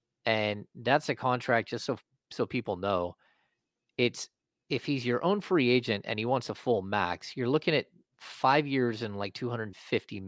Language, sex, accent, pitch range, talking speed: English, male, American, 110-135 Hz, 175 wpm